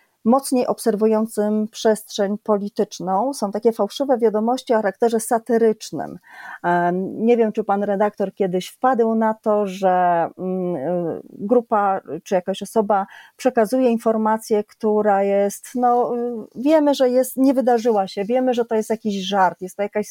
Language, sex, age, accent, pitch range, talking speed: Polish, female, 30-49, native, 200-245 Hz, 135 wpm